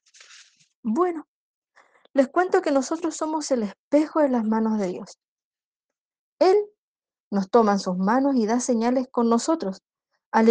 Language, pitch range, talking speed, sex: Spanish, 215-280 Hz, 145 wpm, female